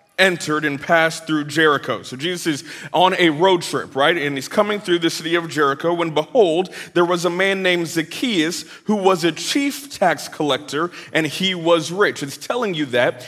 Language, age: English, 30-49